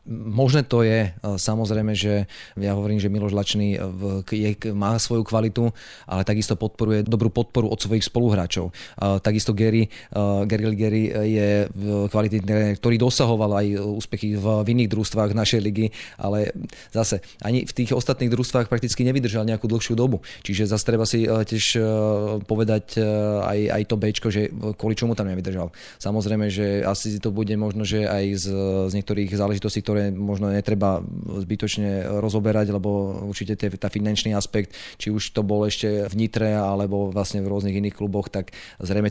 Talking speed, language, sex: 155 wpm, Slovak, male